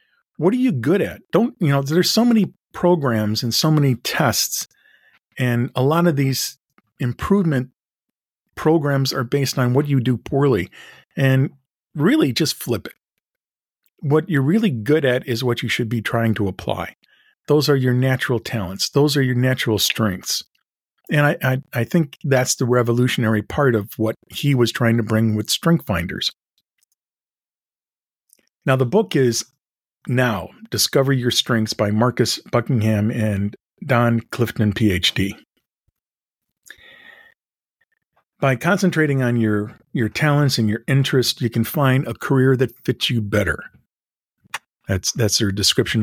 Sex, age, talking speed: male, 50-69, 150 wpm